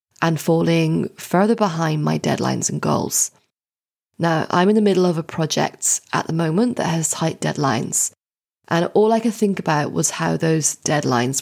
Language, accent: English, British